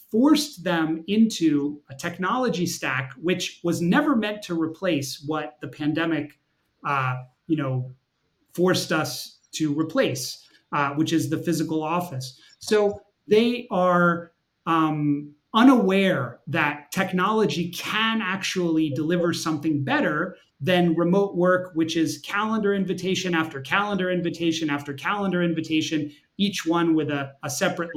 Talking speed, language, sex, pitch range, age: 120 wpm, English, male, 145-185 Hz, 30-49